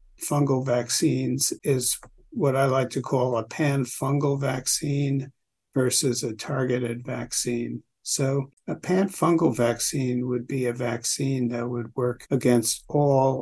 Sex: male